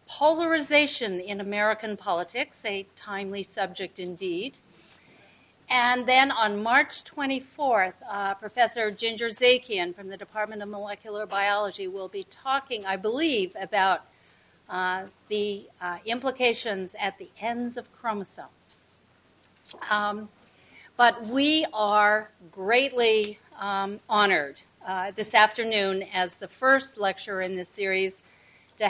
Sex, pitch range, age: female, 190-245 Hz, 50-69